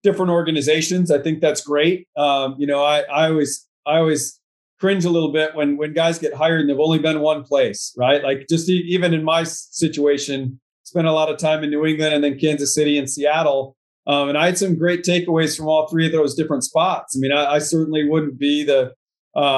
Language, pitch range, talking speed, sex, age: English, 145-160 Hz, 225 wpm, male, 40-59